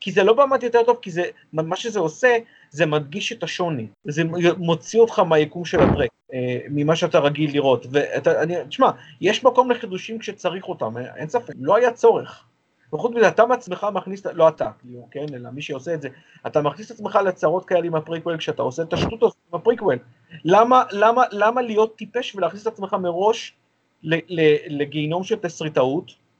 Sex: male